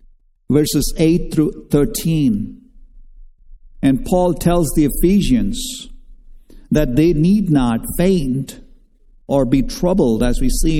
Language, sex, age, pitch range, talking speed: English, male, 50-69, 130-200 Hz, 110 wpm